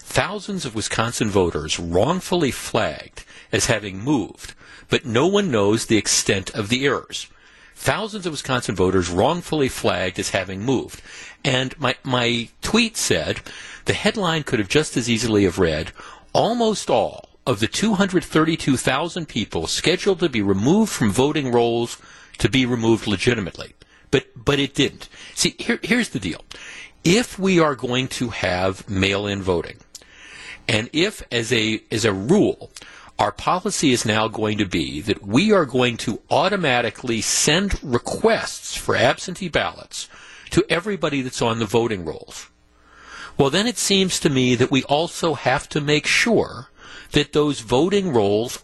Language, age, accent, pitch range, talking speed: English, 50-69, American, 115-175 Hz, 155 wpm